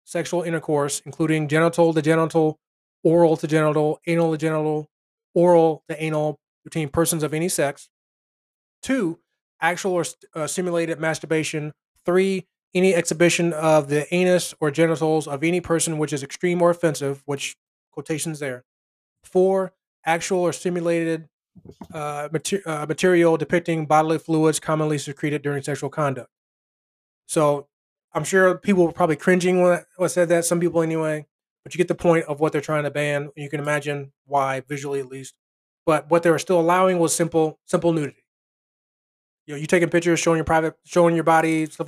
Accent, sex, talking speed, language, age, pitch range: American, male, 165 wpm, English, 20-39, 150-170 Hz